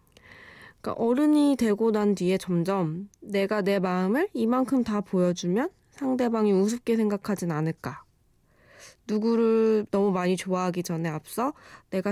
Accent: native